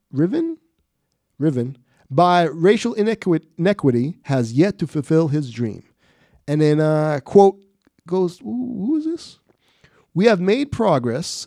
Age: 30-49